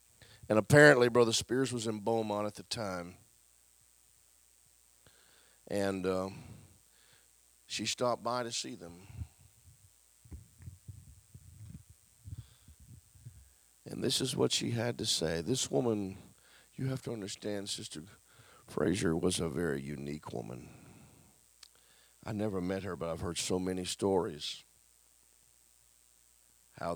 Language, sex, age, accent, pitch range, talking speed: English, male, 40-59, American, 65-100 Hz, 110 wpm